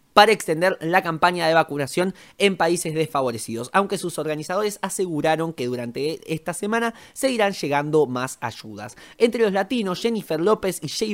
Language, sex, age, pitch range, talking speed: Spanish, male, 20-39, 150-230 Hz, 150 wpm